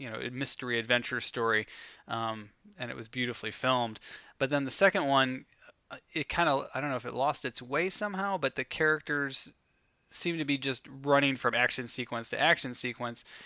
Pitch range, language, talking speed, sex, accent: 115-135 Hz, English, 185 wpm, male, American